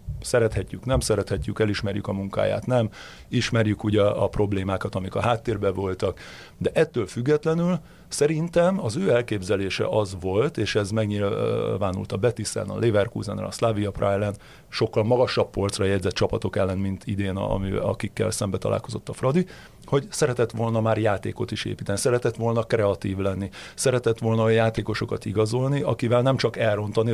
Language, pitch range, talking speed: Hungarian, 100-125 Hz, 150 wpm